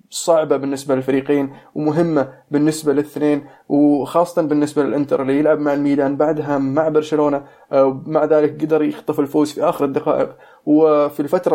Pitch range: 135-160 Hz